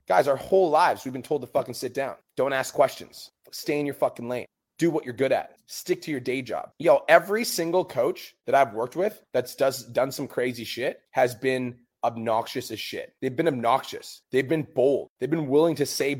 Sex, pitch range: male, 125-170 Hz